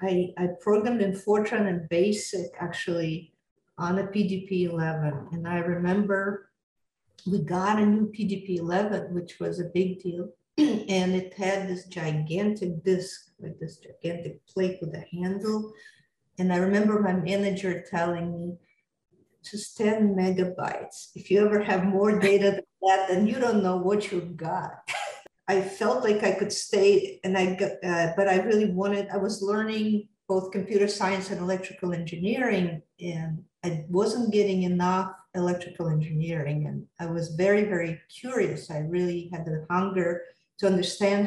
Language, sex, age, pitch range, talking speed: English, female, 50-69, 175-200 Hz, 155 wpm